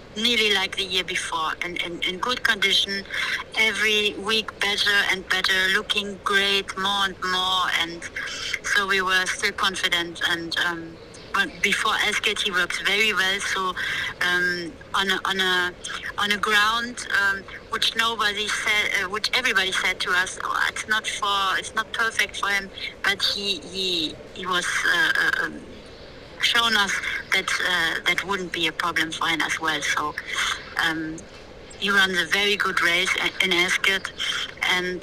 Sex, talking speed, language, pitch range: female, 165 wpm, English, 185-220 Hz